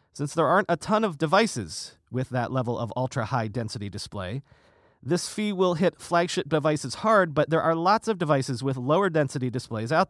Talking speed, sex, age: 180 wpm, male, 40-59